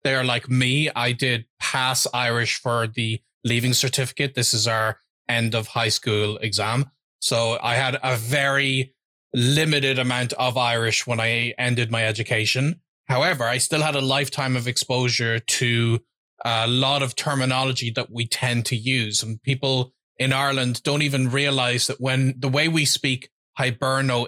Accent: Irish